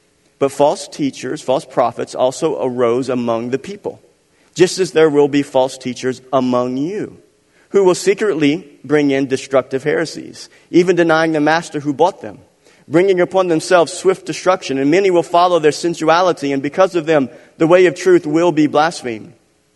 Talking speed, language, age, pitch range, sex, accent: 165 wpm, English, 50-69, 130-185 Hz, male, American